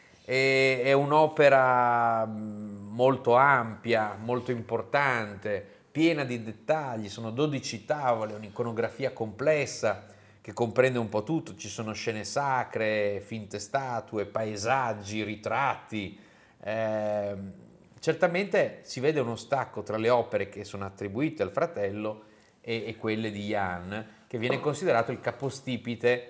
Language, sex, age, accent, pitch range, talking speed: Italian, male, 30-49, native, 105-130 Hz, 115 wpm